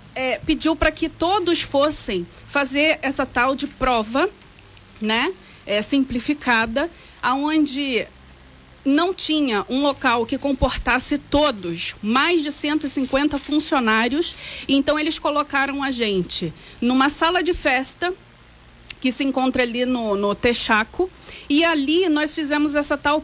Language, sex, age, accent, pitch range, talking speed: Portuguese, female, 40-59, Brazilian, 250-330 Hz, 120 wpm